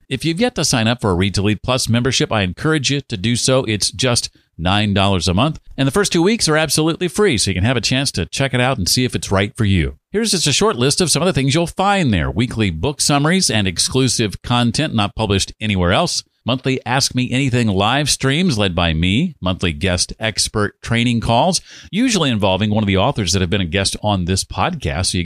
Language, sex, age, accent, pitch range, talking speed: English, male, 50-69, American, 100-135 Hz, 240 wpm